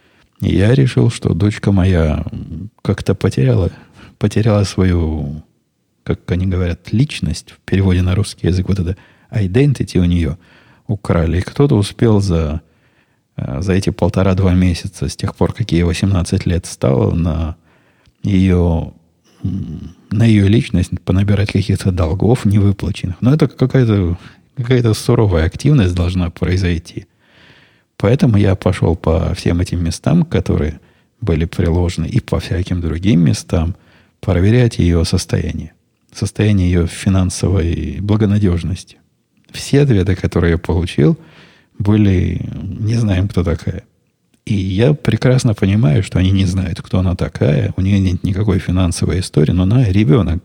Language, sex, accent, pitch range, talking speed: Russian, male, native, 85-110 Hz, 130 wpm